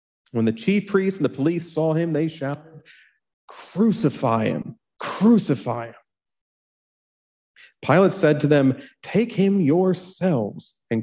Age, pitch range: 40-59, 130-180 Hz